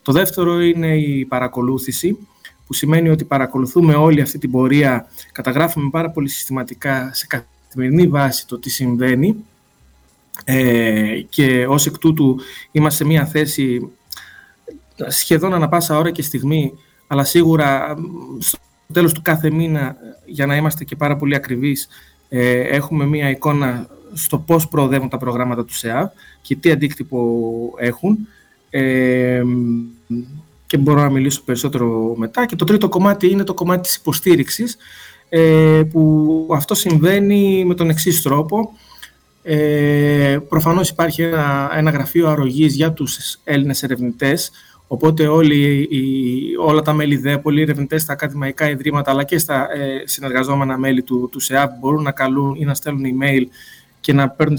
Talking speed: 140 wpm